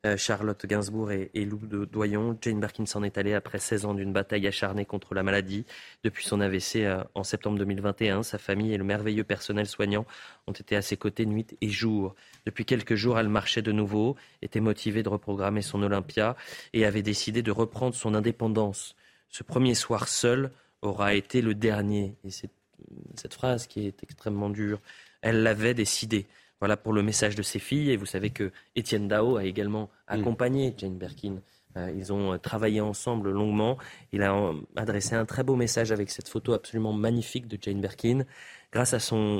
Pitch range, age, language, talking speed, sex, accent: 100-115 Hz, 20-39, French, 185 wpm, male, French